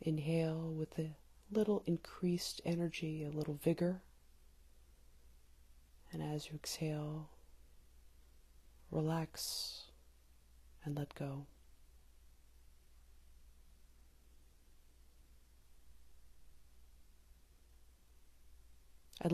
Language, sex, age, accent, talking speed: English, female, 30-49, American, 55 wpm